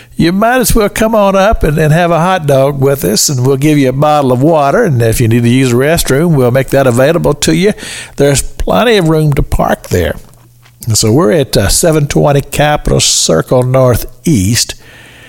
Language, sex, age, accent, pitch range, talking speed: English, male, 60-79, American, 115-160 Hz, 210 wpm